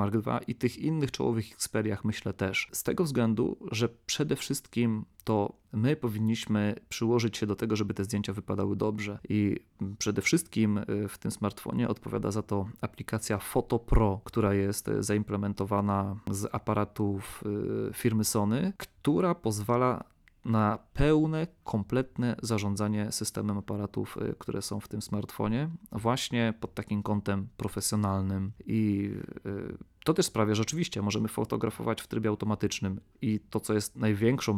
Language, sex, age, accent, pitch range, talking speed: Polish, male, 30-49, native, 100-115 Hz, 140 wpm